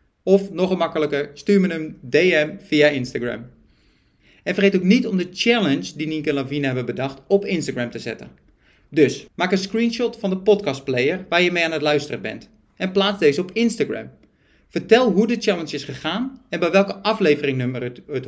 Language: Dutch